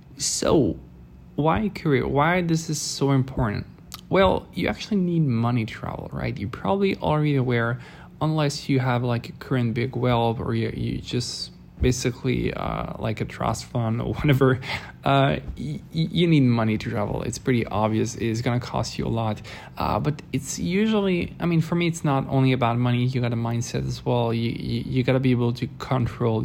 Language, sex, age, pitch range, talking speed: English, male, 20-39, 120-145 Hz, 190 wpm